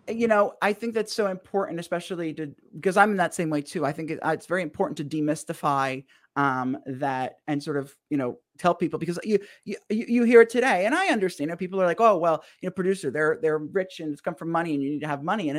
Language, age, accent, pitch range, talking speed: English, 30-49, American, 155-195 Hz, 255 wpm